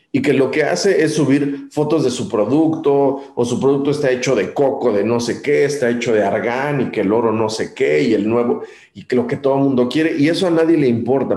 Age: 40-59